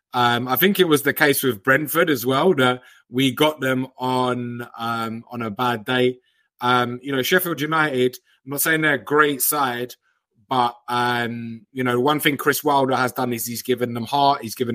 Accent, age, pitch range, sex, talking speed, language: British, 20-39, 125-150 Hz, male, 205 wpm, English